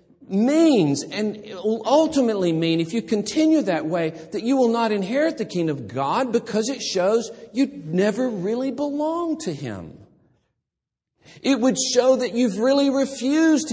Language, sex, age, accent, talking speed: English, male, 50-69, American, 155 wpm